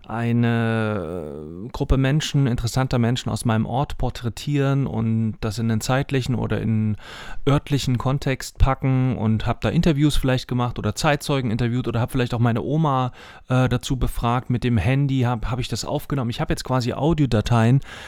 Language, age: German, 30-49